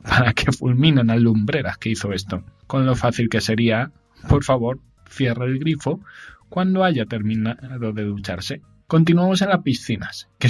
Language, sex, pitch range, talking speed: Spanish, male, 110-145 Hz, 160 wpm